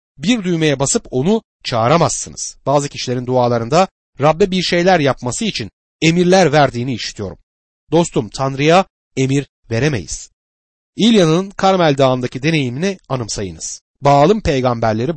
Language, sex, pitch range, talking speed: Turkish, male, 120-175 Hz, 105 wpm